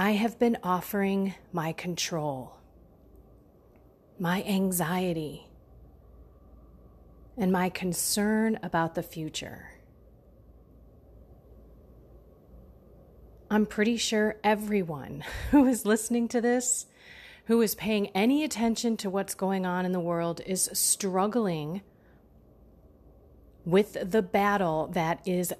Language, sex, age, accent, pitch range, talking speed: English, female, 30-49, American, 170-215 Hz, 100 wpm